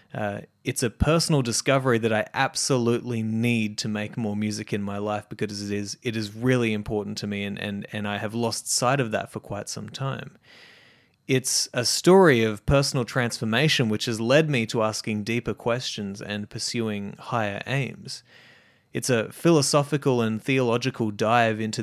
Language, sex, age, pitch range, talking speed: English, male, 20-39, 110-135 Hz, 175 wpm